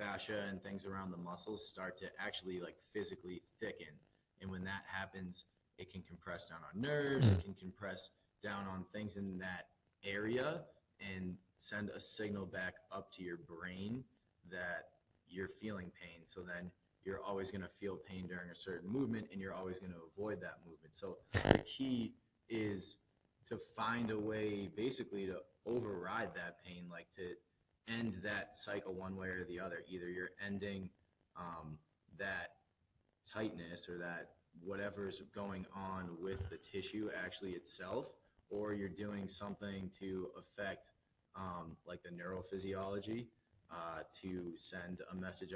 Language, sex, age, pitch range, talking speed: English, male, 20-39, 90-100 Hz, 155 wpm